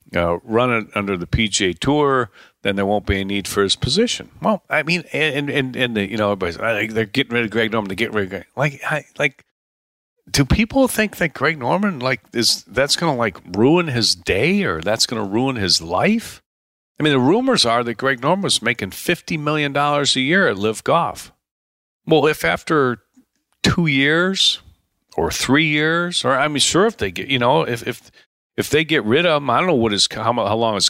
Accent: American